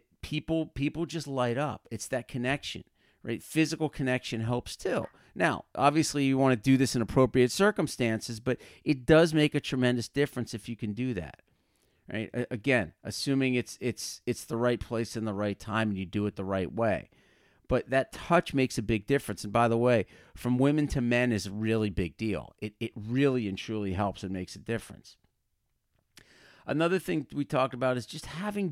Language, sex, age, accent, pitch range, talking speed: English, male, 40-59, American, 105-140 Hz, 195 wpm